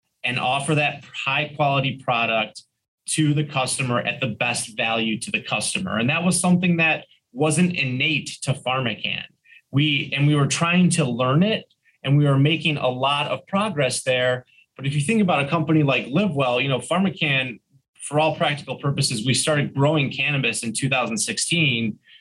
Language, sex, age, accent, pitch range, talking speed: English, male, 20-39, American, 125-155 Hz, 175 wpm